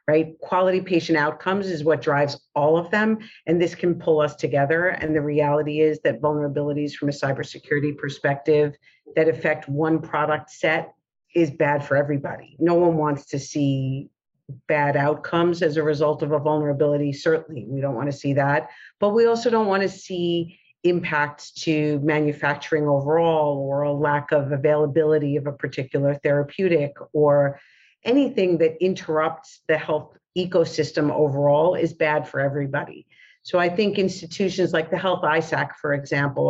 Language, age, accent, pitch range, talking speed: English, 50-69, American, 145-165 Hz, 155 wpm